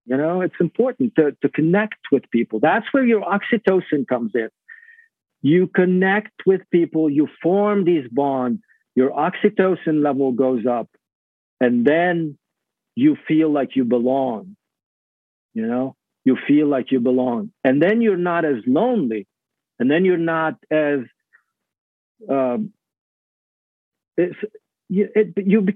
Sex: male